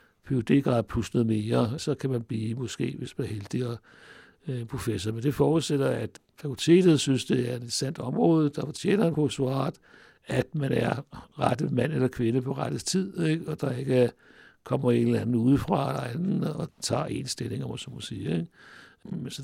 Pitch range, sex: 120-145 Hz, male